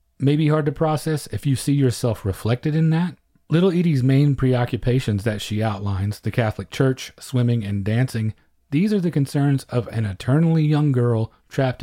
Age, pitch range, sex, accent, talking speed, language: 40-59, 115-150 Hz, male, American, 180 wpm, English